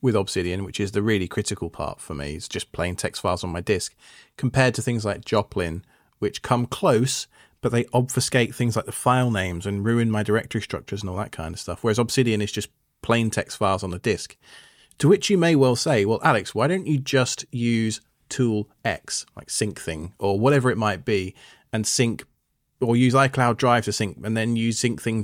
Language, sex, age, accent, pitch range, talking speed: English, male, 30-49, British, 100-125 Hz, 210 wpm